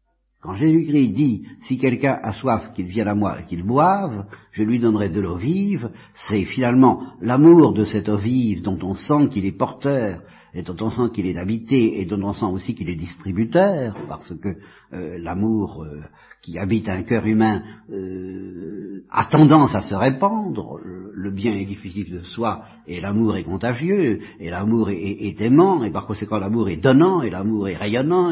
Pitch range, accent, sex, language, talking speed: 100-145 Hz, French, male, French, 185 wpm